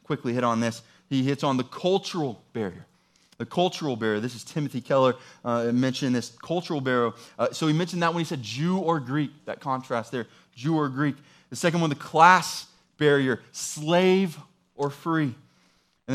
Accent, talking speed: American, 180 wpm